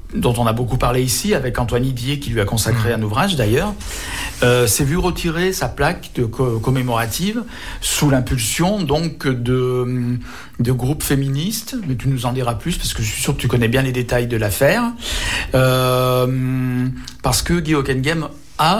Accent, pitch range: French, 115-145 Hz